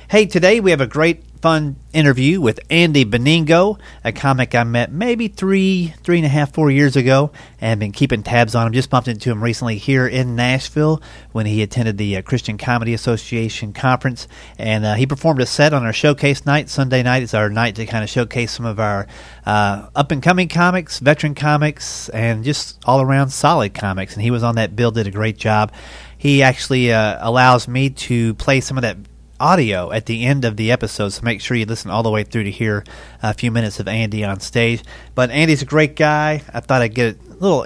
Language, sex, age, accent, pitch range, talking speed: English, male, 40-59, American, 105-135 Hz, 215 wpm